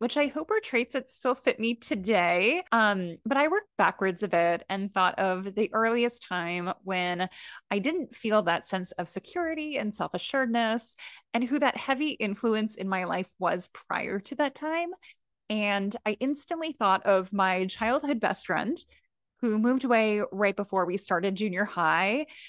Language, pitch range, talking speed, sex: English, 195-275 Hz, 170 wpm, female